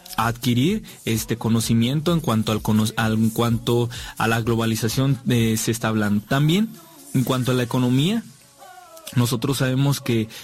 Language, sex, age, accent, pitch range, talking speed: Spanish, male, 20-39, Mexican, 115-145 Hz, 150 wpm